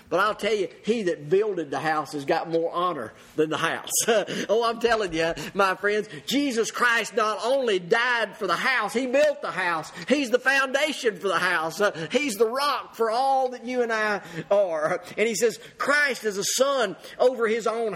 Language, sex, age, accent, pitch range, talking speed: English, male, 50-69, American, 175-230 Hz, 200 wpm